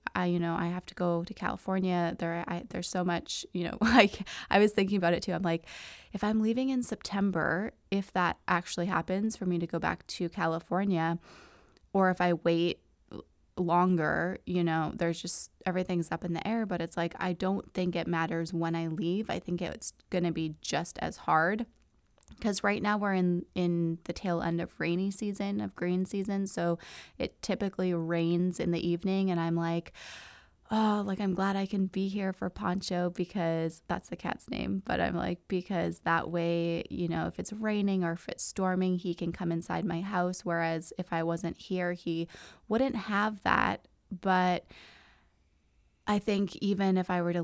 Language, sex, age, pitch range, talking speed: English, female, 20-39, 170-195 Hz, 195 wpm